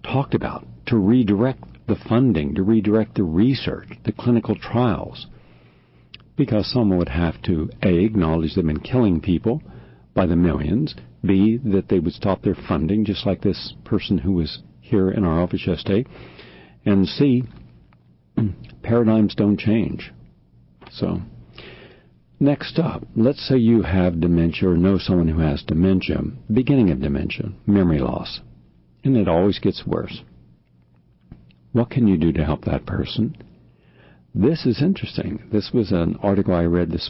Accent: American